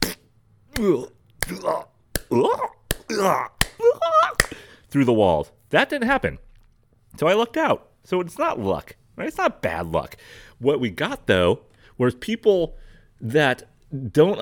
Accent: American